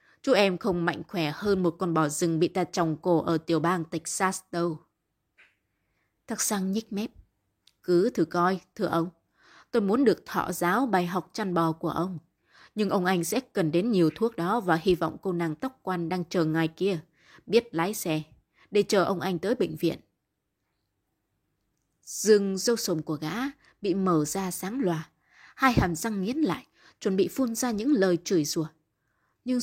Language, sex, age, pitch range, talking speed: Vietnamese, female, 20-39, 170-225 Hz, 190 wpm